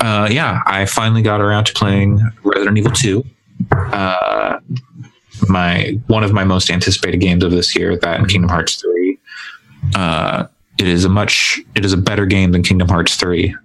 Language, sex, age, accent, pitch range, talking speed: English, male, 20-39, American, 85-115 Hz, 175 wpm